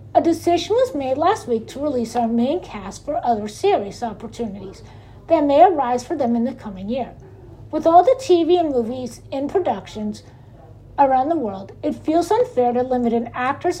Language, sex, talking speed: English, female, 185 wpm